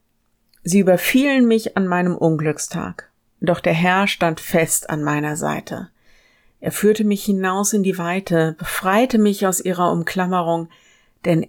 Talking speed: 140 wpm